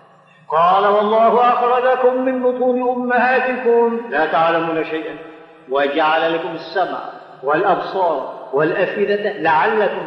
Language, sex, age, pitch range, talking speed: Arabic, male, 50-69, 180-265 Hz, 90 wpm